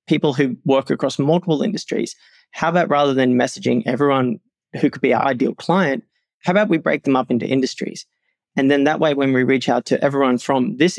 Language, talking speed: English, 205 wpm